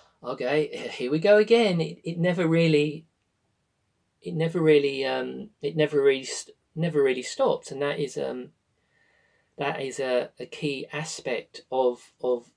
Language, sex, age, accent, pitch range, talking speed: English, male, 40-59, British, 120-170 Hz, 160 wpm